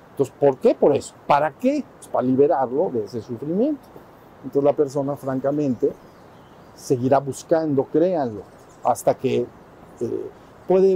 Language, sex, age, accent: Spanish, male, 50-69, Mexican